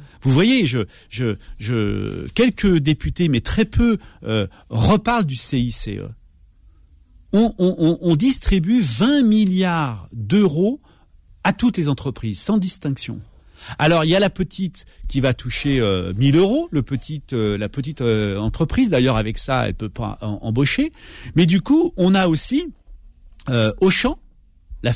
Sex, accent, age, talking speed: male, French, 50-69, 155 wpm